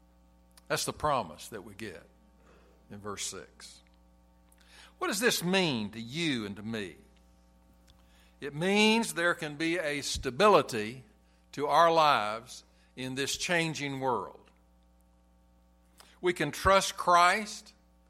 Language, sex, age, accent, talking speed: English, male, 60-79, American, 120 wpm